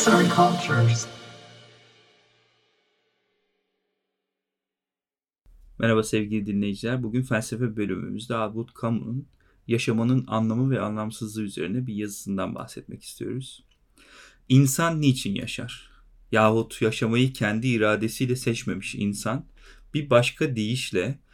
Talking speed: 80 wpm